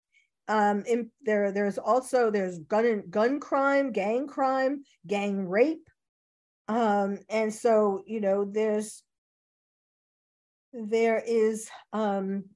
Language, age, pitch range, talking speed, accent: English, 50-69, 200-245 Hz, 105 wpm, American